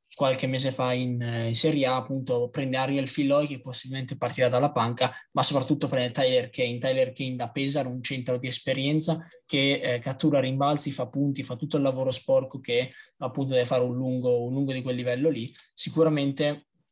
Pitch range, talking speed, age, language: 130-145 Hz, 190 wpm, 20-39, Italian